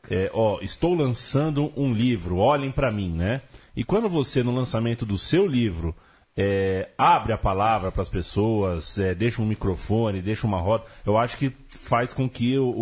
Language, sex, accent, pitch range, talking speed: Portuguese, male, Brazilian, 100-135 Hz, 185 wpm